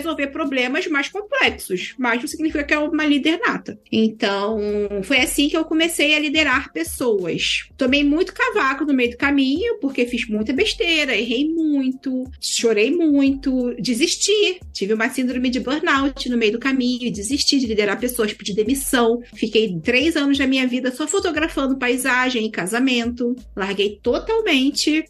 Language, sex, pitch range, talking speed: Portuguese, female, 235-305 Hz, 155 wpm